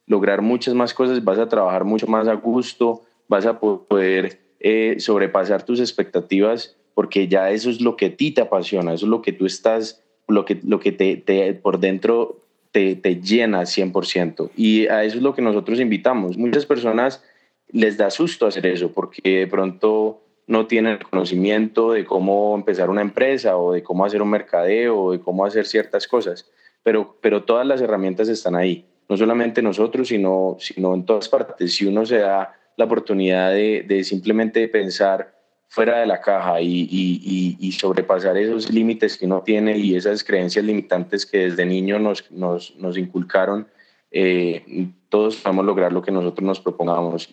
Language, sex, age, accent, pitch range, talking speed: English, male, 20-39, Colombian, 95-115 Hz, 185 wpm